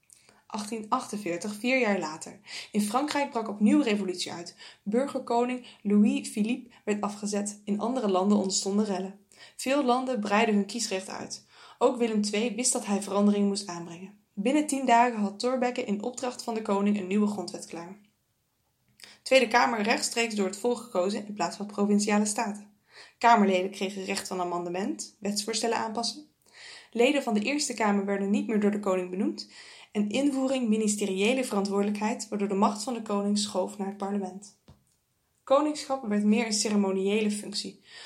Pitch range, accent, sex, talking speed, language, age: 200-235 Hz, Dutch, female, 155 wpm, English, 20-39